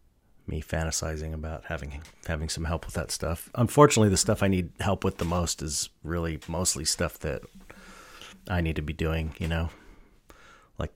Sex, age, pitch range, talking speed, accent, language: male, 30-49, 80-95 Hz, 175 wpm, American, English